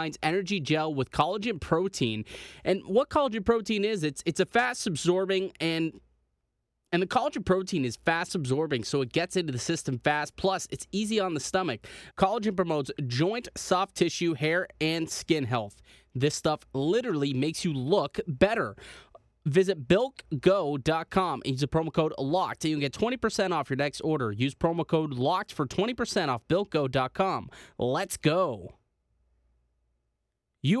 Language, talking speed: English, 160 wpm